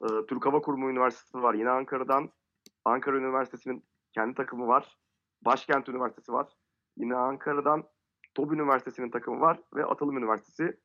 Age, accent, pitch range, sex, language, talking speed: 30-49, native, 120-150 Hz, male, Turkish, 135 wpm